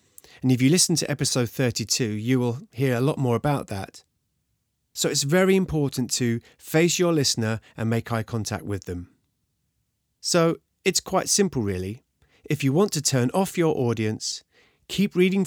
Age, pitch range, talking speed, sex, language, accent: 30-49, 110-155 Hz, 170 wpm, male, English, British